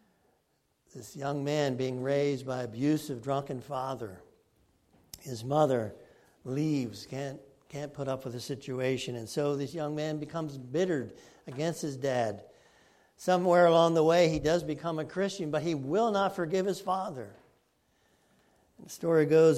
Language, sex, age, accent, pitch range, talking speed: English, male, 60-79, American, 125-160 Hz, 145 wpm